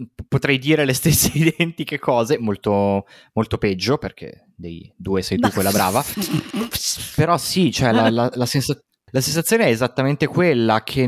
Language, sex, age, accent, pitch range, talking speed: Italian, male, 20-39, native, 110-145 Hz, 155 wpm